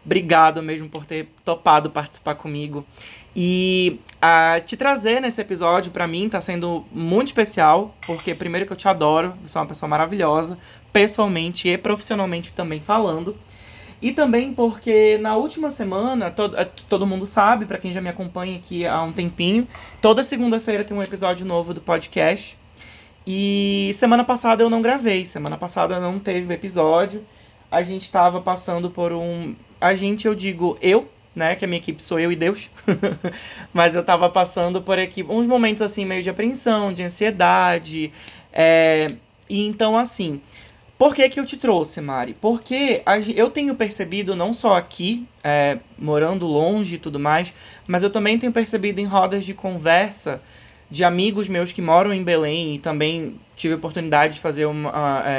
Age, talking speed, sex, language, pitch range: 20-39, 170 wpm, male, Portuguese, 165-210 Hz